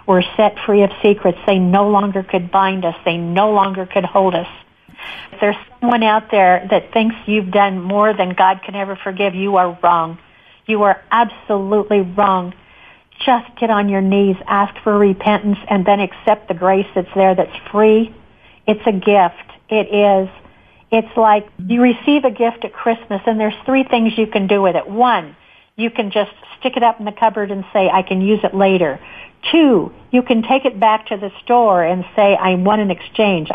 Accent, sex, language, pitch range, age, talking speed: American, female, English, 195-225 Hz, 50-69, 195 wpm